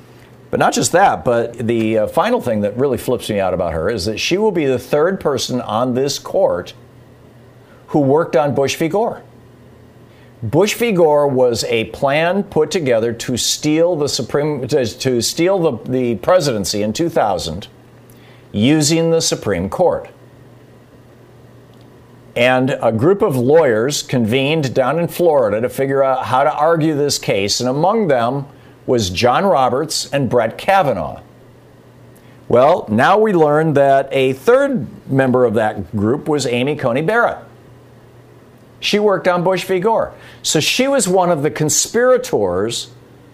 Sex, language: male, English